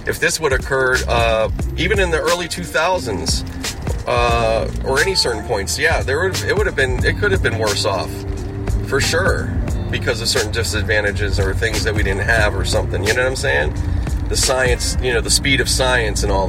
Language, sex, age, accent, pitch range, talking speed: English, male, 30-49, American, 90-110 Hz, 215 wpm